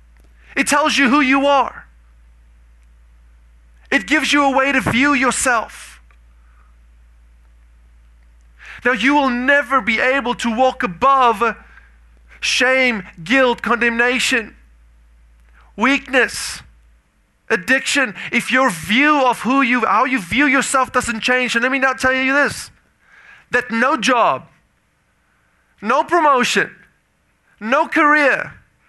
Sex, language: male, English